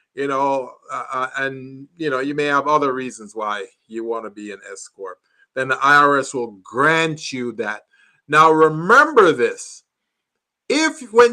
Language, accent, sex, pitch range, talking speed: English, American, male, 140-205 Hz, 165 wpm